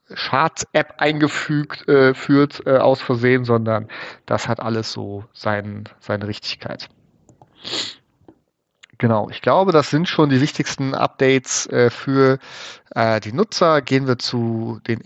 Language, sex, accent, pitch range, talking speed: German, male, German, 115-140 Hz, 130 wpm